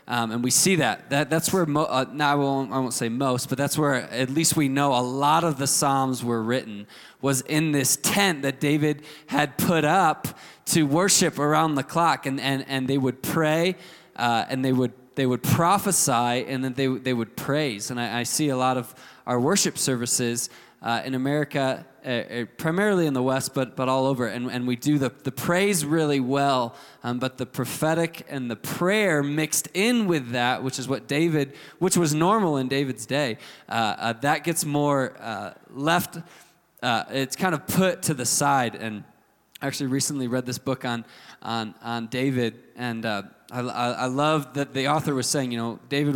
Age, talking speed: 20-39, 200 wpm